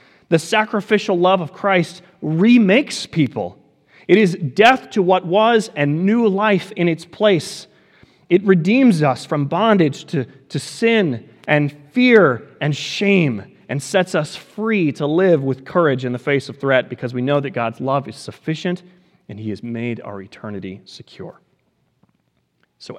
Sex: male